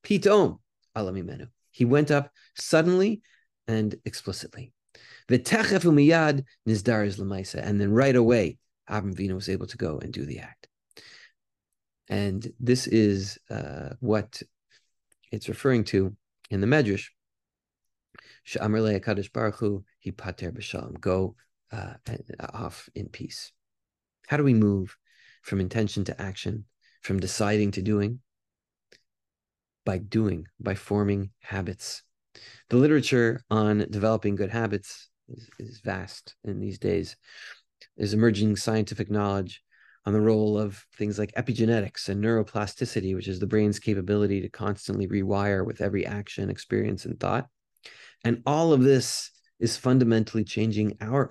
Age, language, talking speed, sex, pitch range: 30-49, English, 115 wpm, male, 100-120 Hz